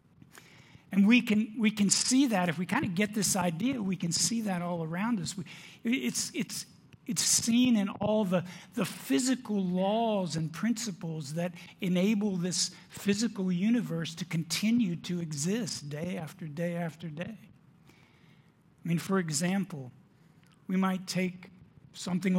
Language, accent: English, American